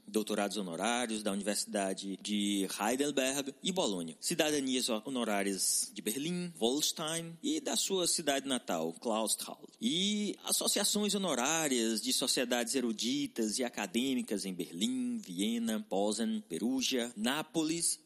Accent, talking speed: Brazilian, 110 wpm